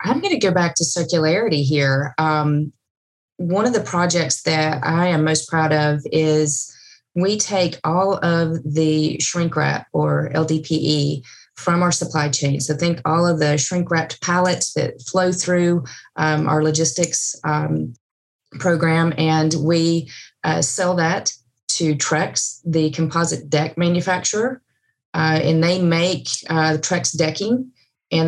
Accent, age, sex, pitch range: American, 30-49, female, 150-170 Hz